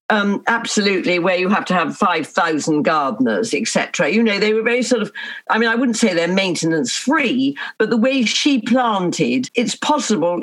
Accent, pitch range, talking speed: British, 195-265 Hz, 185 wpm